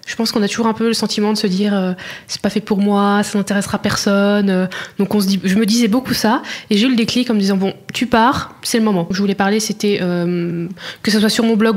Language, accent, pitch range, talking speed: French, French, 195-225 Hz, 265 wpm